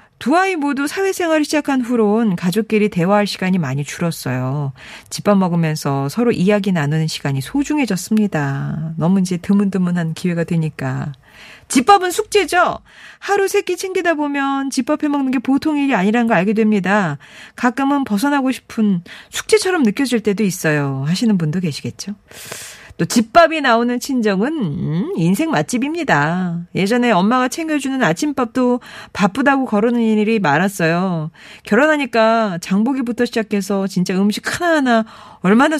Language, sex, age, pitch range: Korean, female, 40-59, 175-265 Hz